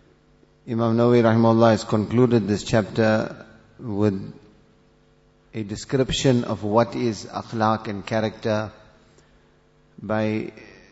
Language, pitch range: English, 105-115 Hz